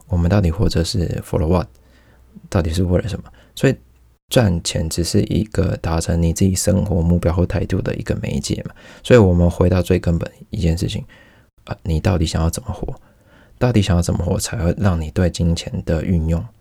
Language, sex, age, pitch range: Chinese, male, 20-39, 85-105 Hz